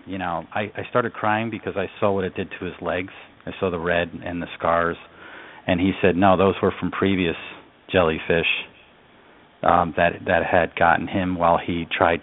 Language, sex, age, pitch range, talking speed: English, male, 40-59, 85-100 Hz, 195 wpm